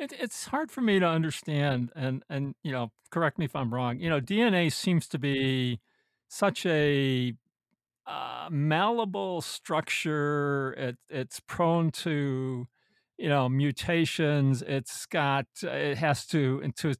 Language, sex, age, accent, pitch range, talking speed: English, male, 50-69, American, 135-165 Hz, 140 wpm